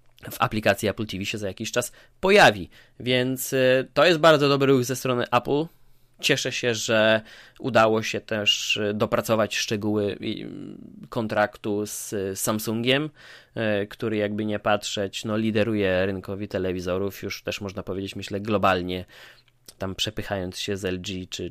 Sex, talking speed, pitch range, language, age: male, 135 wpm, 100-125 Hz, Polish, 20-39